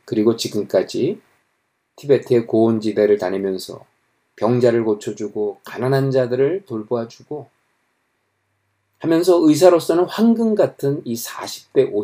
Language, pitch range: Korean, 115-160 Hz